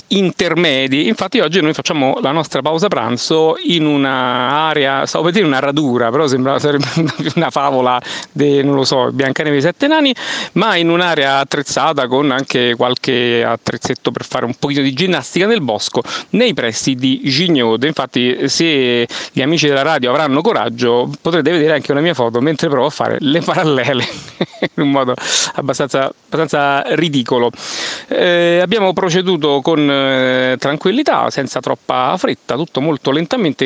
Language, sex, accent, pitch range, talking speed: Italian, male, native, 130-160 Hz, 150 wpm